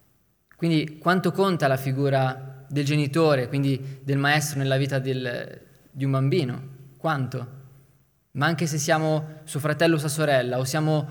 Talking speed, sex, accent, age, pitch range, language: 145 wpm, male, native, 20-39, 135-160 Hz, Italian